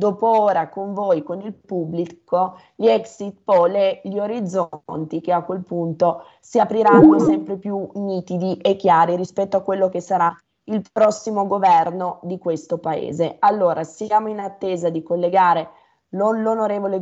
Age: 20-39